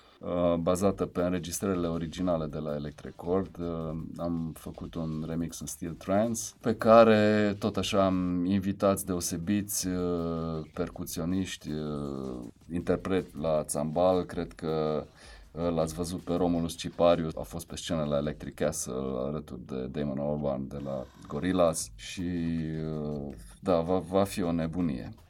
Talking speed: 125 wpm